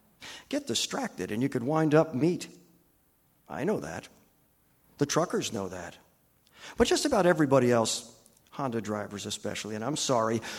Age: 50-69